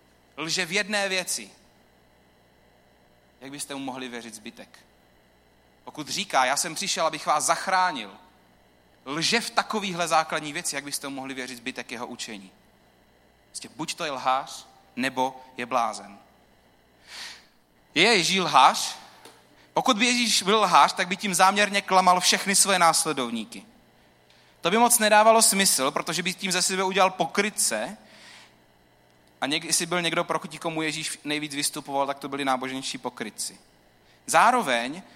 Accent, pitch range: native, 120-185 Hz